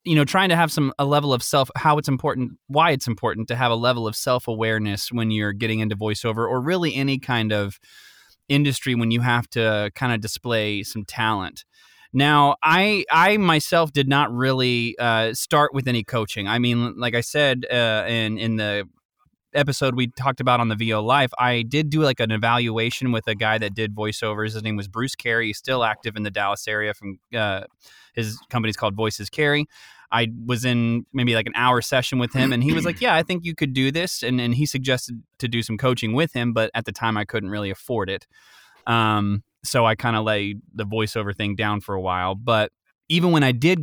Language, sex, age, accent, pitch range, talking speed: English, male, 20-39, American, 110-140 Hz, 220 wpm